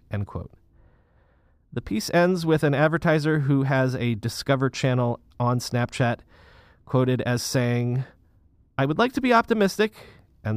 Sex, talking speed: male, 140 wpm